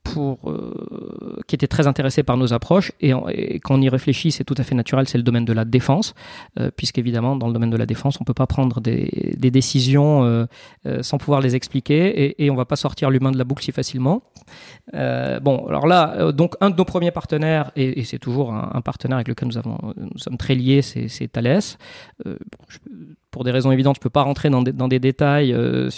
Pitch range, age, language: 120-145 Hz, 40-59, French